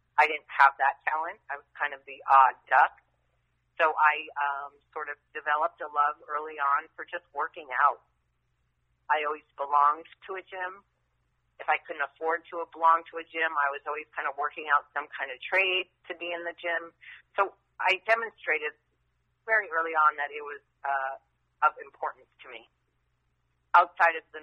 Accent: American